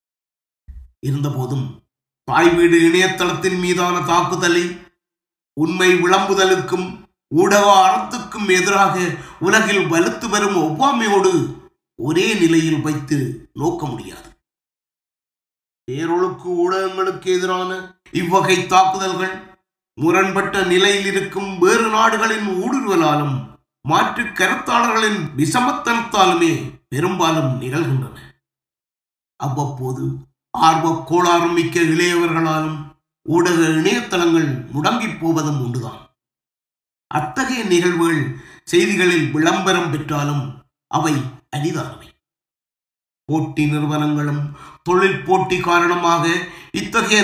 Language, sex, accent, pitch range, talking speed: Tamil, male, native, 150-185 Hz, 60 wpm